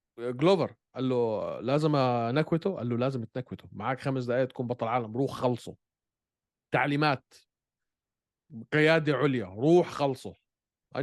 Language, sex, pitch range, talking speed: Arabic, male, 125-165 Hz, 125 wpm